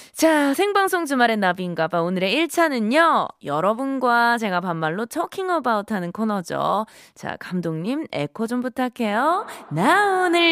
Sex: female